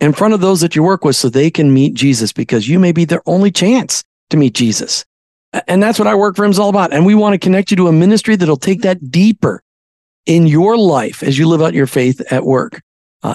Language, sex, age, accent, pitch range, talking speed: English, male, 50-69, American, 150-205 Hz, 260 wpm